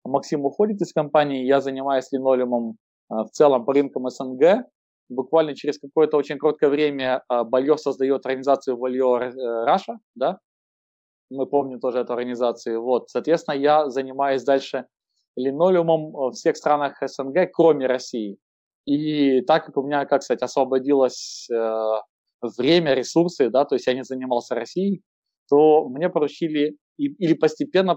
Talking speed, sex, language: 135 wpm, male, Russian